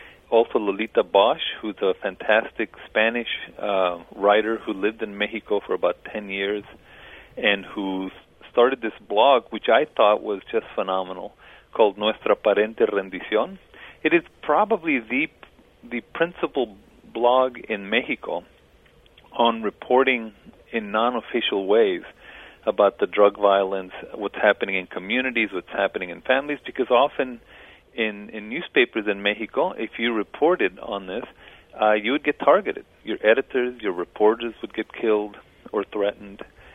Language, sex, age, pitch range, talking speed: English, male, 40-59, 100-120 Hz, 135 wpm